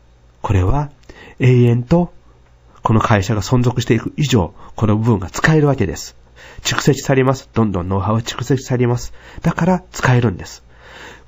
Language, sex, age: Japanese, male, 40-59